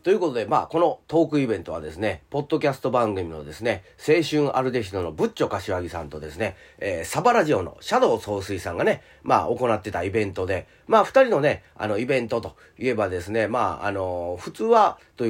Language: Japanese